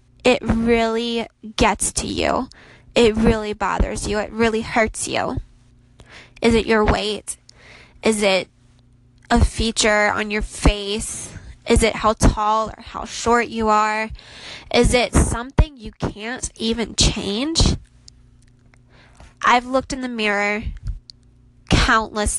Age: 10-29